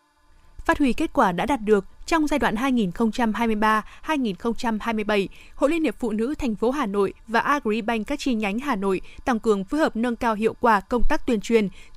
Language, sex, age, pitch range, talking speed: Vietnamese, female, 20-39, 225-275 Hz, 200 wpm